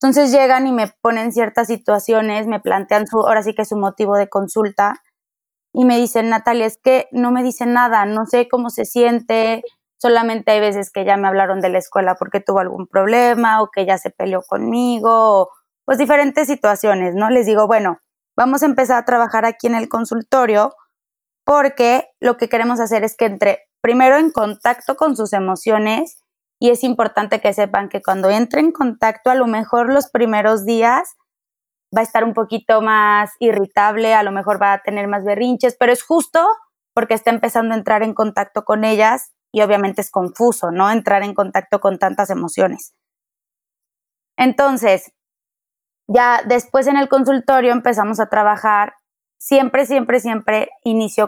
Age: 20-39